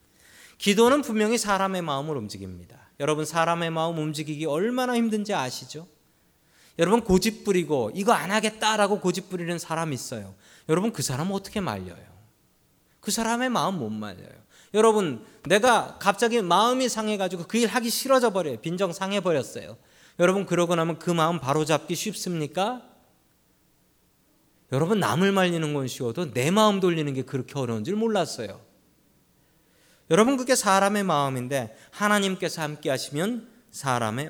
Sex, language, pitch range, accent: male, Korean, 120-200 Hz, native